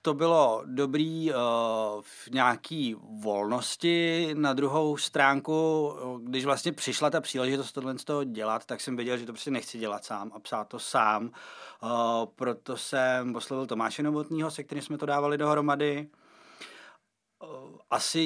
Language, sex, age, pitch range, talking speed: Czech, male, 30-49, 120-145 Hz, 150 wpm